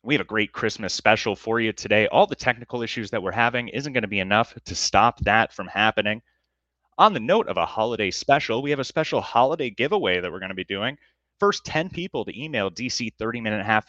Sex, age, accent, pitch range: male, 30-49, American, 95-130 Hz